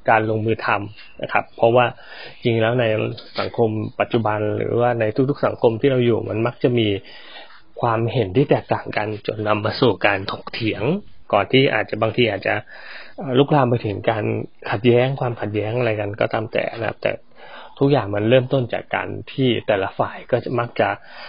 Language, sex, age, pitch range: Thai, male, 20-39, 110-140 Hz